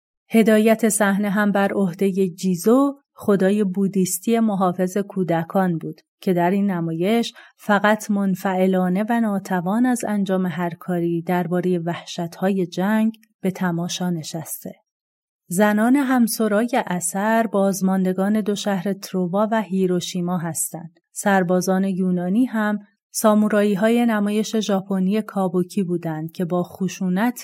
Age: 30-49